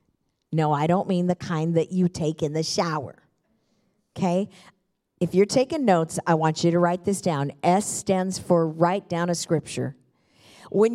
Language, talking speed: English, 175 wpm